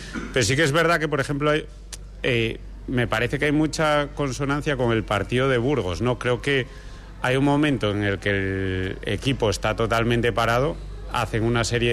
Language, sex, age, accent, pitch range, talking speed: Spanish, male, 30-49, Spanish, 100-130 Hz, 190 wpm